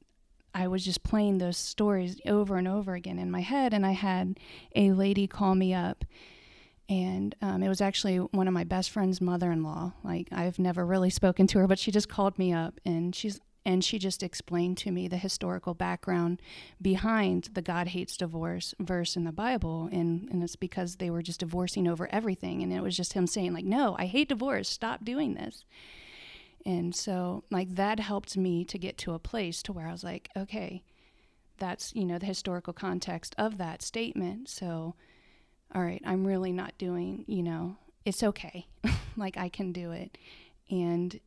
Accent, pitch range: American, 175-195 Hz